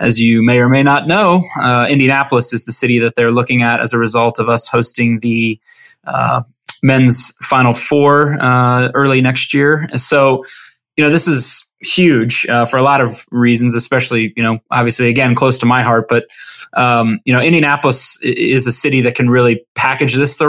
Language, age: English, 20-39